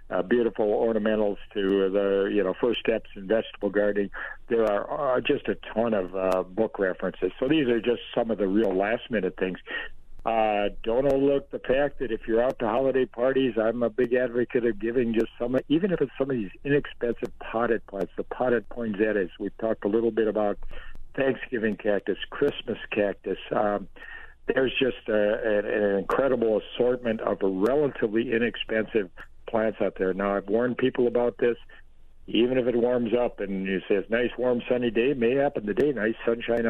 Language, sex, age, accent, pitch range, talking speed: English, male, 60-79, American, 105-120 Hz, 190 wpm